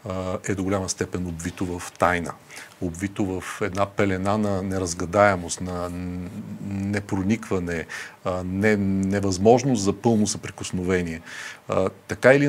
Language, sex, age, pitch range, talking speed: Bulgarian, male, 40-59, 95-120 Hz, 100 wpm